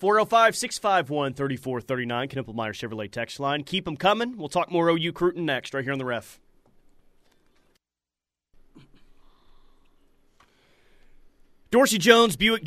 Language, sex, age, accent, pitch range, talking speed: English, male, 30-49, American, 140-190 Hz, 100 wpm